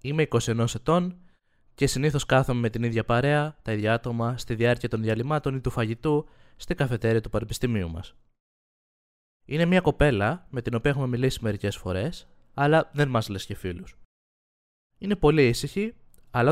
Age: 20-39